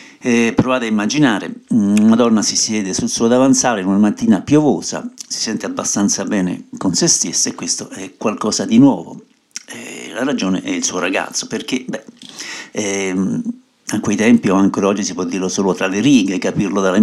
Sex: male